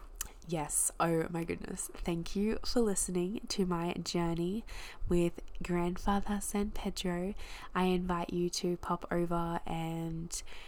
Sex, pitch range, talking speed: female, 170-210 Hz, 125 wpm